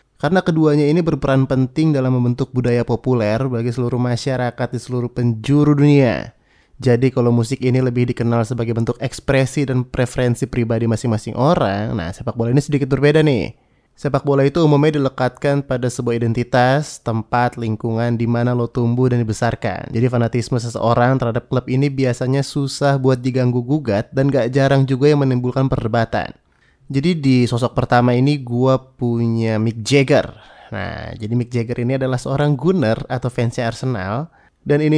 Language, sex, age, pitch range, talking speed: Indonesian, male, 20-39, 120-140 Hz, 160 wpm